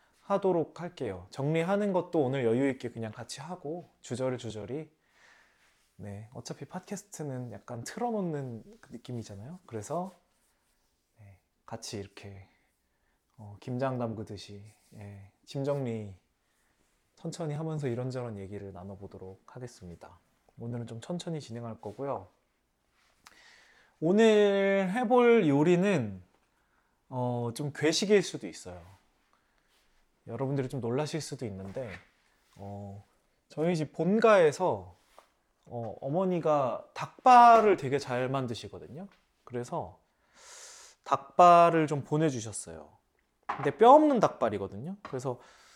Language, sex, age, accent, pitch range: Korean, male, 20-39, native, 110-175 Hz